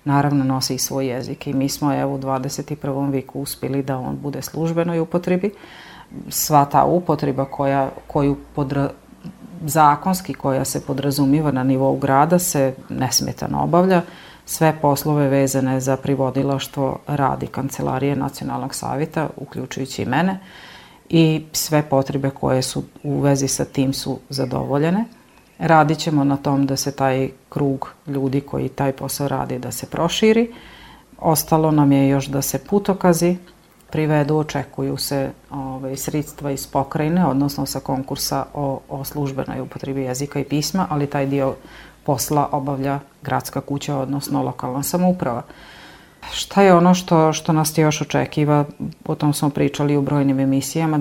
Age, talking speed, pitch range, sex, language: 40-59, 140 wpm, 135-155 Hz, female, Croatian